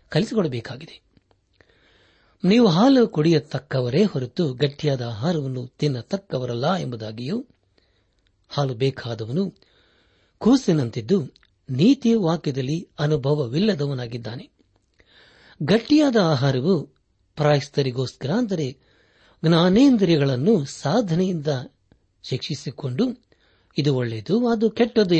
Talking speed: 65 wpm